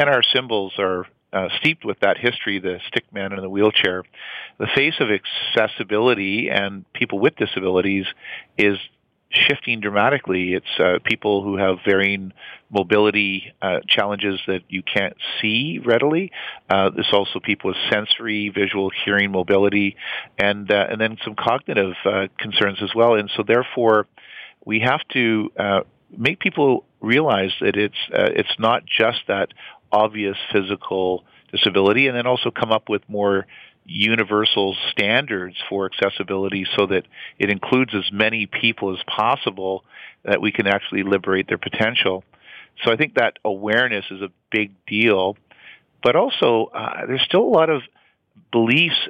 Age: 50-69